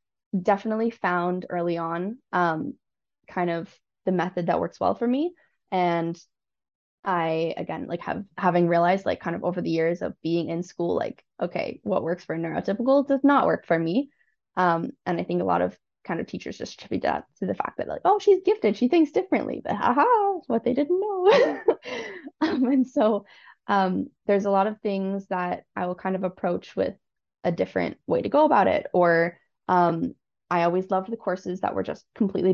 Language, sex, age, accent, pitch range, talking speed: English, female, 10-29, American, 175-250 Hz, 195 wpm